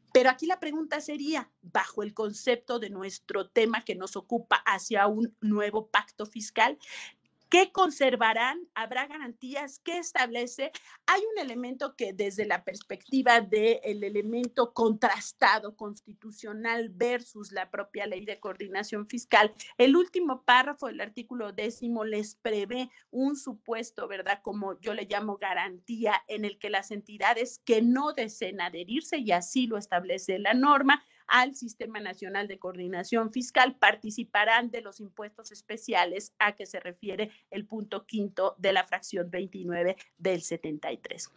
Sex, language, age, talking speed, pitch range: female, Spanish, 50-69, 140 wpm, 205-255 Hz